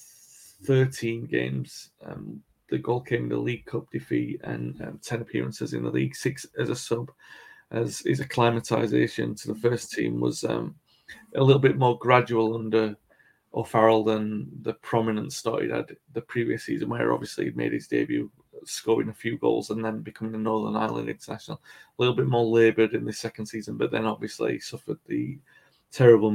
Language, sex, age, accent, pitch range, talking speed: English, male, 30-49, British, 110-125 Hz, 180 wpm